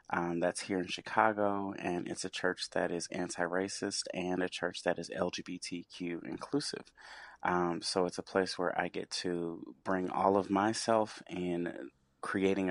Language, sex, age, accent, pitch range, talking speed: English, male, 30-49, American, 90-95 Hz, 160 wpm